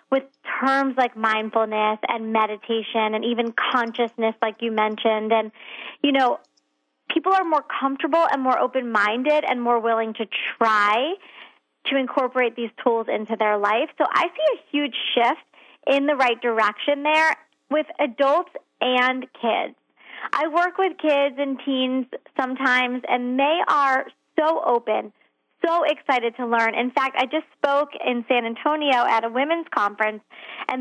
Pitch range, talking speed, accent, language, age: 230-290 Hz, 150 wpm, American, English, 30-49